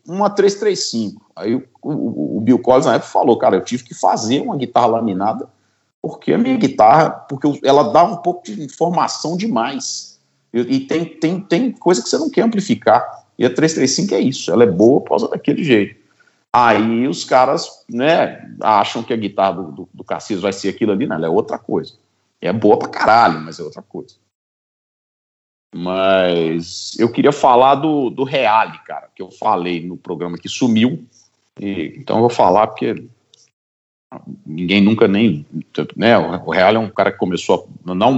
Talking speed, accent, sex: 175 wpm, Brazilian, male